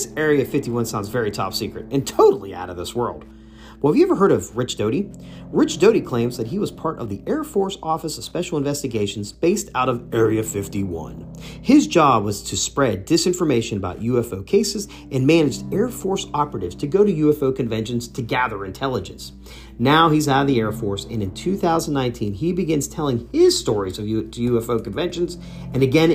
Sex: male